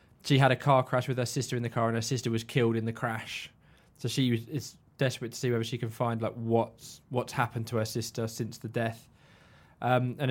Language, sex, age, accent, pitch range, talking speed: English, male, 20-39, British, 115-125 Hz, 240 wpm